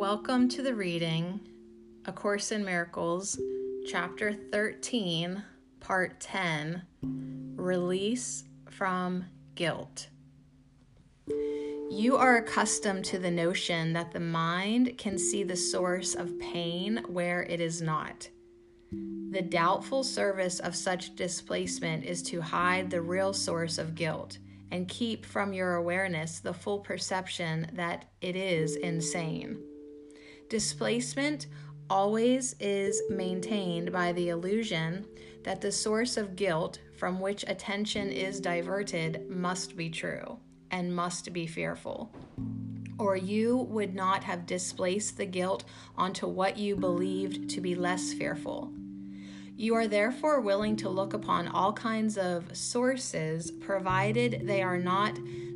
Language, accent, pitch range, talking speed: English, American, 145-195 Hz, 125 wpm